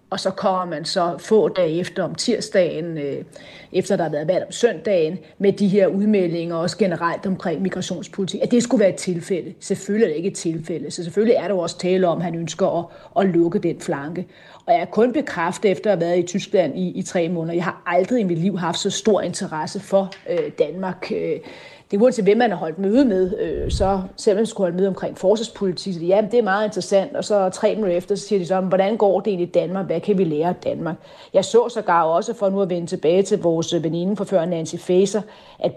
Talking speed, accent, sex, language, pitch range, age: 230 wpm, native, female, Danish, 175-200 Hz, 40-59